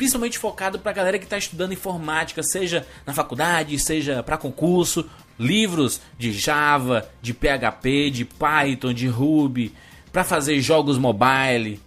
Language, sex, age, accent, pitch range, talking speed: Portuguese, male, 20-39, Brazilian, 135-195 Hz, 135 wpm